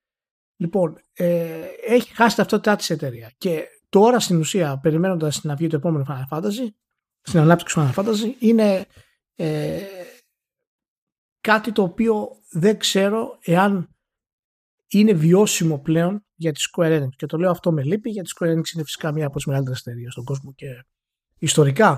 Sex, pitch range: male, 145-205 Hz